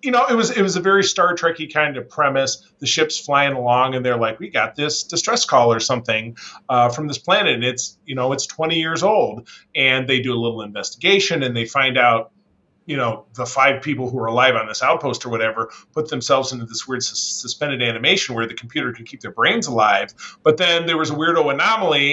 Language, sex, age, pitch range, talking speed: English, male, 30-49, 120-155 Hz, 230 wpm